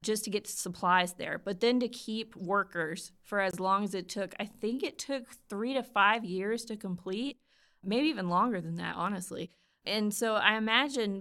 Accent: American